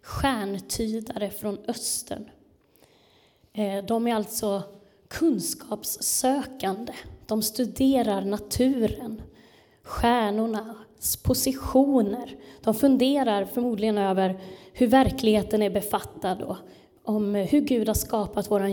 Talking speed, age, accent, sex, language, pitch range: 85 wpm, 20-39, native, female, Swedish, 205-255 Hz